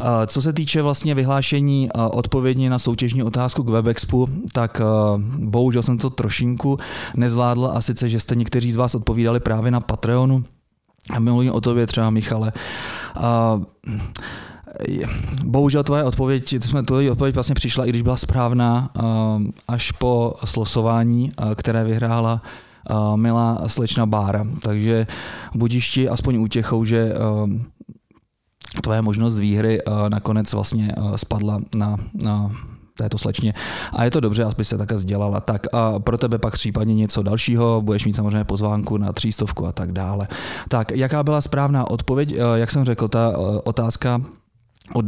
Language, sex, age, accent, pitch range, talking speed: Czech, male, 30-49, native, 110-125 Hz, 140 wpm